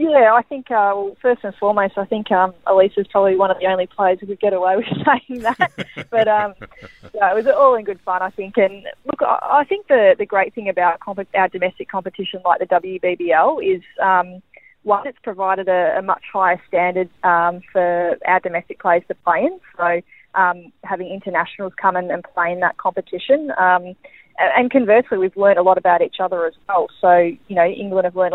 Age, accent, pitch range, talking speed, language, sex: 20-39, Australian, 180-210 Hz, 205 wpm, English, female